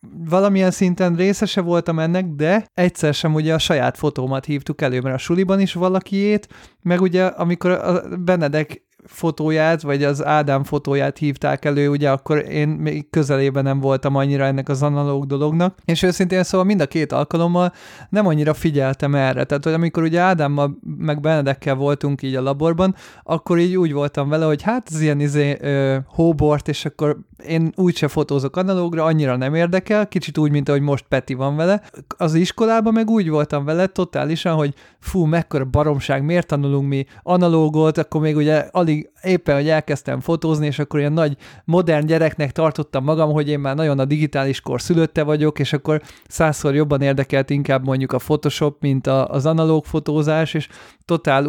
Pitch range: 140-170 Hz